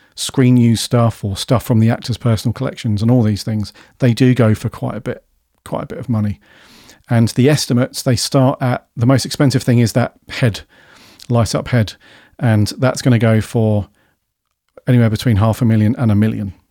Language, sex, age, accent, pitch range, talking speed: English, male, 40-59, British, 110-130 Hz, 200 wpm